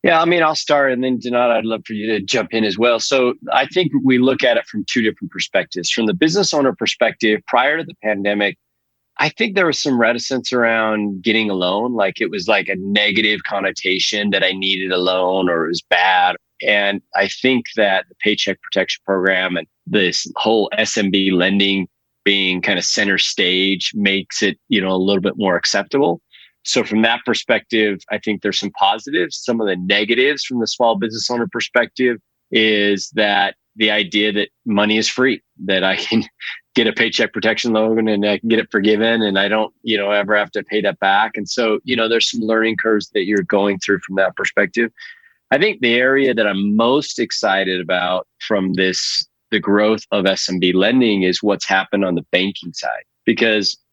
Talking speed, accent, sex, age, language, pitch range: 200 wpm, American, male, 30-49, English, 100-115 Hz